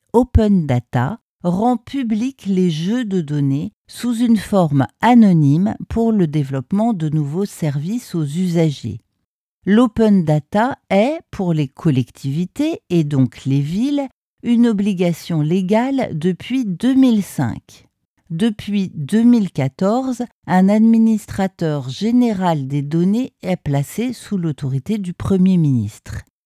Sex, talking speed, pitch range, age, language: female, 110 wpm, 150-220 Hz, 60-79, French